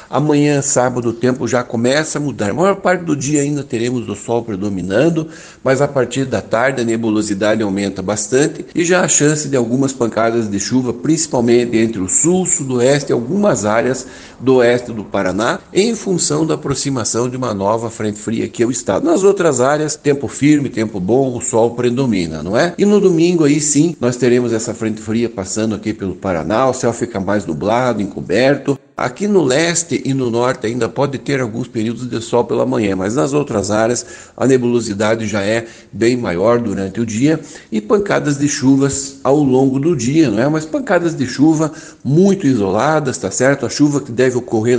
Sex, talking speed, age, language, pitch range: male, 195 wpm, 60-79, Portuguese, 115-145 Hz